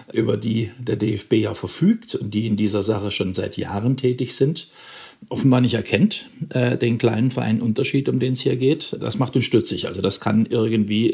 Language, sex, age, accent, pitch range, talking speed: German, male, 50-69, German, 105-125 Hz, 200 wpm